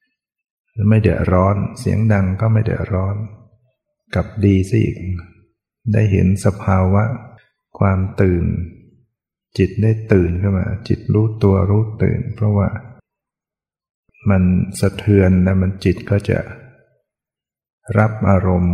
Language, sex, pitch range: Thai, male, 95-115 Hz